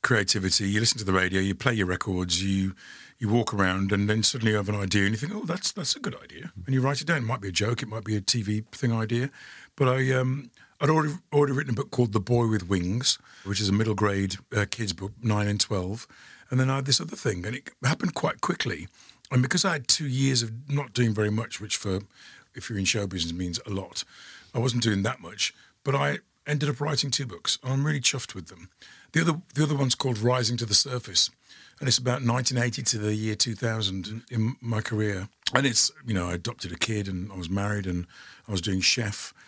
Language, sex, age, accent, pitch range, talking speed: English, male, 50-69, British, 100-125 Hz, 245 wpm